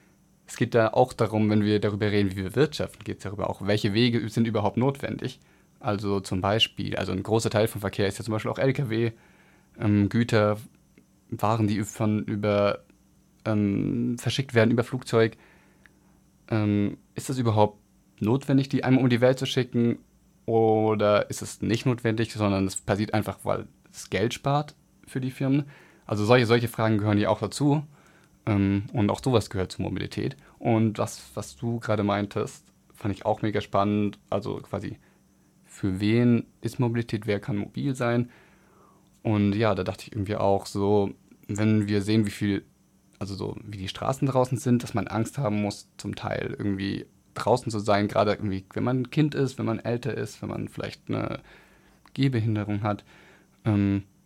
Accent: German